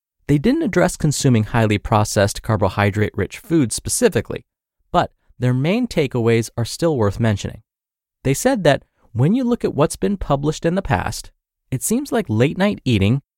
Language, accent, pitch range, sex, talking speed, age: English, American, 110-170 Hz, male, 155 wpm, 20-39